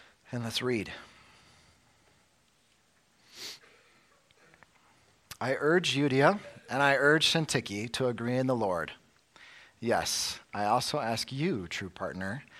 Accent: American